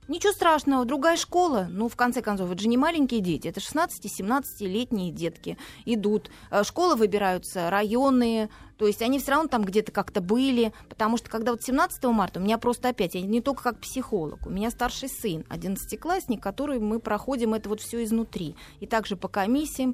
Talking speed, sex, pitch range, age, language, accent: 180 wpm, female, 195-250 Hz, 30-49, Russian, native